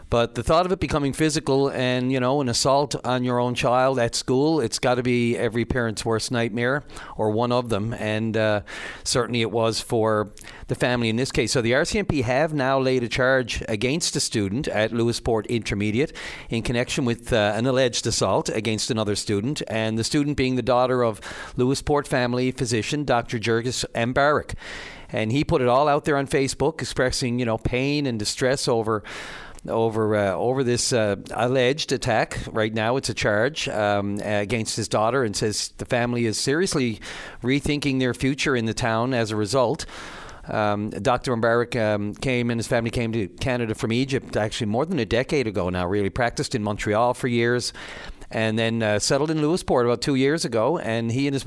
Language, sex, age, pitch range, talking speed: English, male, 40-59, 110-135 Hz, 195 wpm